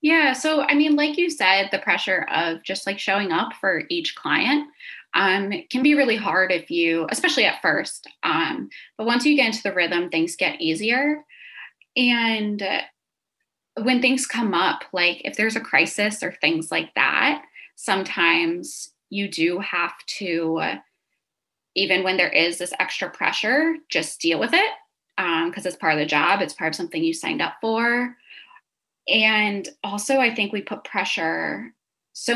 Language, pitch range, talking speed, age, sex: English, 195-285 Hz, 170 wpm, 20-39, female